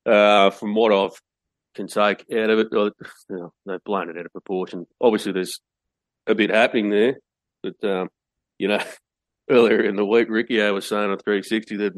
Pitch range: 95-105 Hz